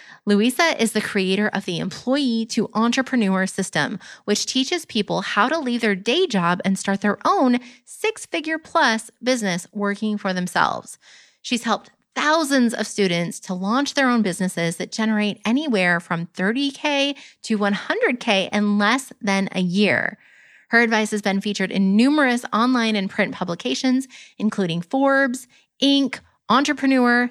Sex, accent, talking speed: female, American, 145 wpm